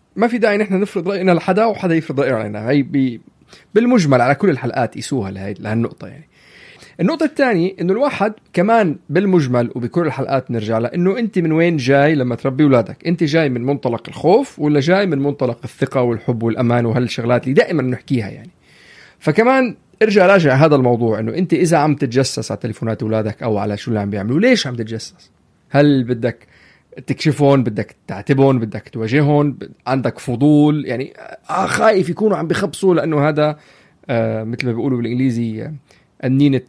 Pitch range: 125-175 Hz